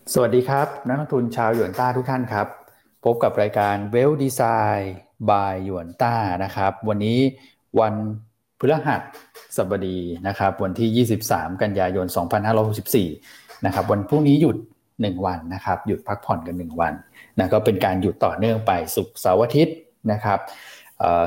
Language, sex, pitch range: Thai, male, 95-120 Hz